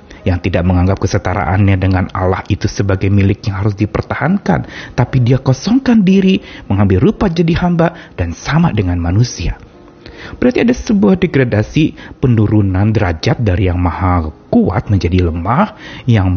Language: Indonesian